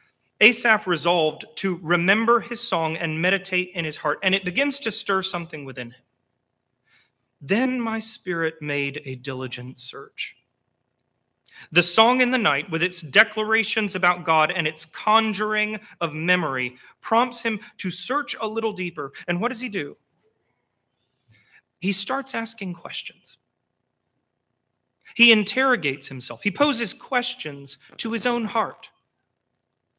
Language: English